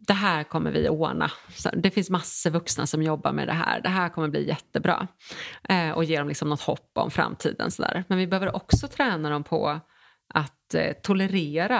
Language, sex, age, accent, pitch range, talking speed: English, female, 30-49, Swedish, 170-225 Hz, 190 wpm